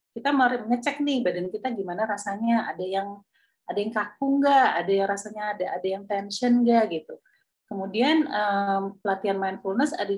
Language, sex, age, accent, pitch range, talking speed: Indonesian, female, 30-49, native, 180-235 Hz, 165 wpm